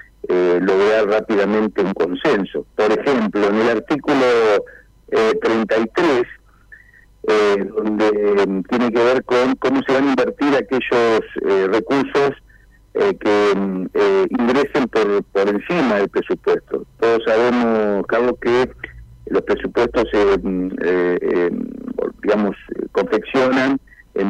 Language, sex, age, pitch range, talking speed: Spanish, male, 50-69, 105-135 Hz, 120 wpm